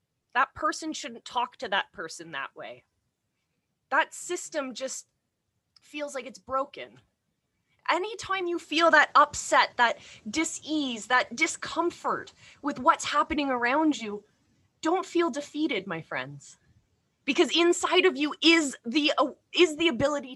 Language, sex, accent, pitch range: English, female, American, 255-330 Hz